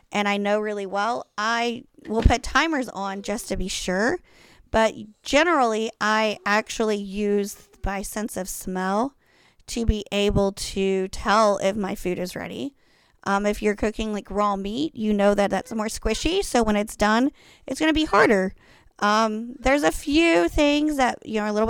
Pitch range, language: 200-235 Hz, English